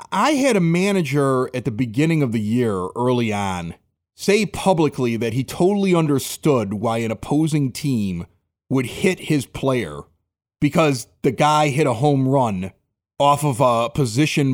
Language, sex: English, male